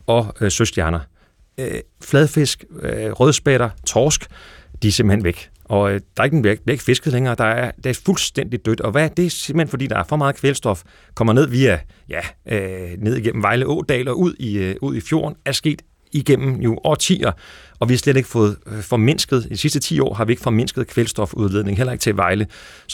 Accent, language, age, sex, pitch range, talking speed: native, Danish, 30-49, male, 115-145 Hz, 210 wpm